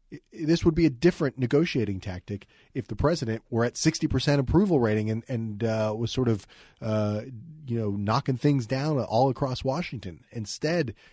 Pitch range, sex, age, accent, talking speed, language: 105-135 Hz, male, 40-59, American, 175 wpm, English